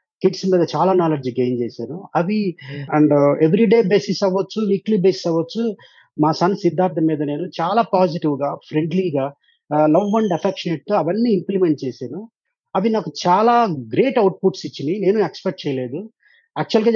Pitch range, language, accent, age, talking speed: 160-205 Hz, Telugu, native, 30-49, 140 wpm